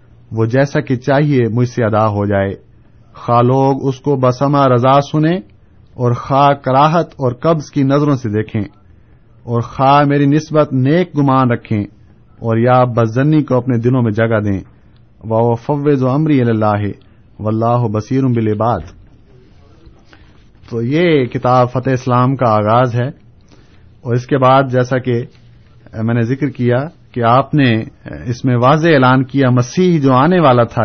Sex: male